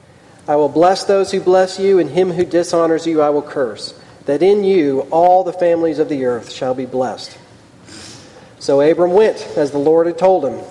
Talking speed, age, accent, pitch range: 200 wpm, 40-59, American, 145-175 Hz